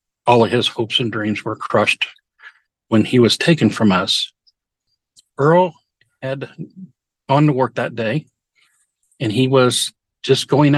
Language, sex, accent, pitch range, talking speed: English, male, American, 115-135 Hz, 145 wpm